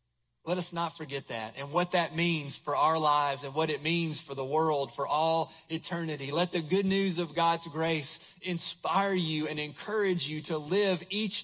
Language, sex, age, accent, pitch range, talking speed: English, male, 30-49, American, 160-210 Hz, 195 wpm